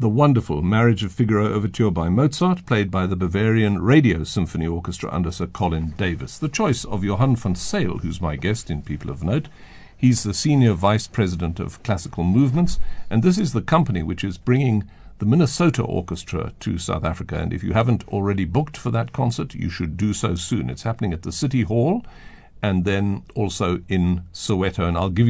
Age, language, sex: 60-79, English, male